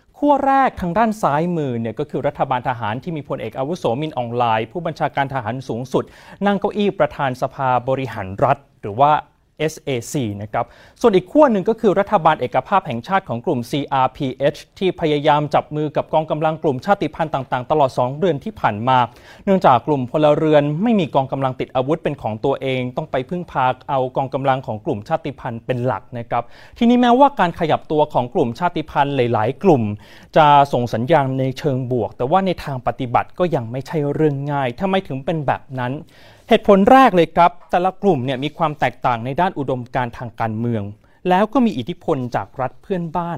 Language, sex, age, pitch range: Thai, male, 30-49, 130-175 Hz